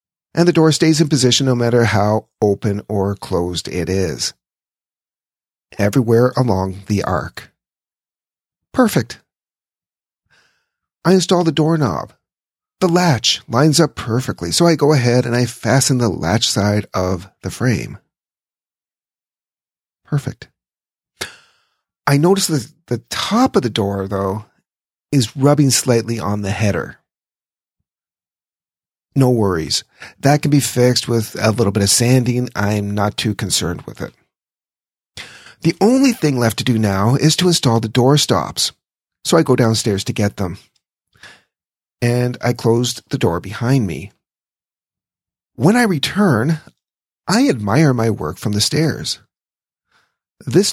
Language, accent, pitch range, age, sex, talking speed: English, American, 105-145 Hz, 40-59, male, 135 wpm